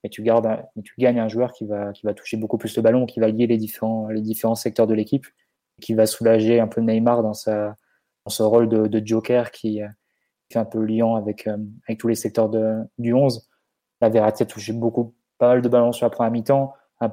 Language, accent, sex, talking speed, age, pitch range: French, French, male, 240 wpm, 20-39, 110-125 Hz